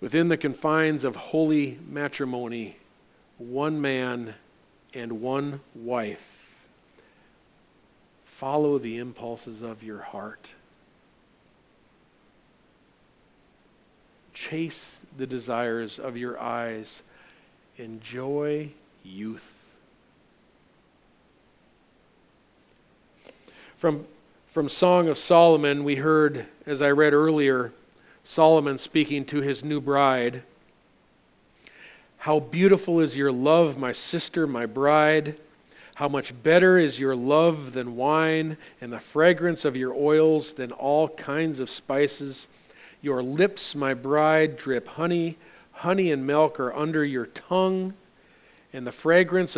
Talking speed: 105 wpm